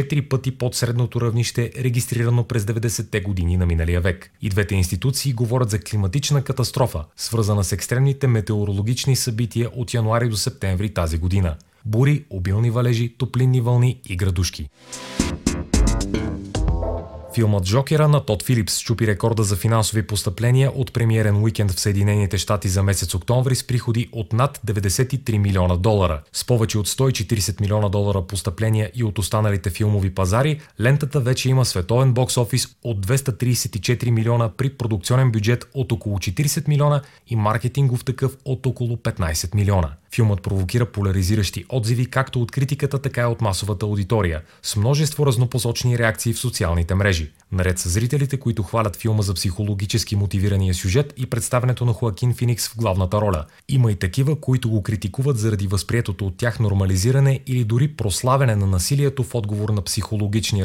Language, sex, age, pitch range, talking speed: Bulgarian, male, 30-49, 100-125 Hz, 150 wpm